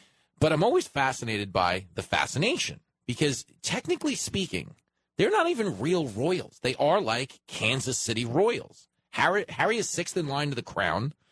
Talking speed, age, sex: 160 wpm, 40-59, male